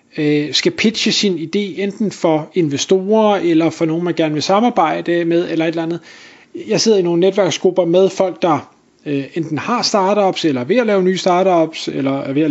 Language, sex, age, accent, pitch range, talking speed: Danish, male, 30-49, native, 155-200 Hz, 195 wpm